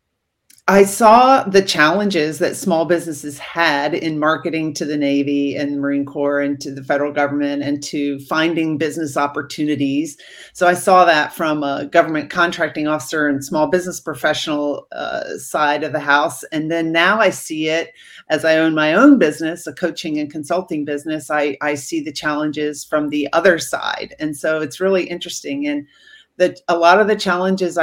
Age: 40-59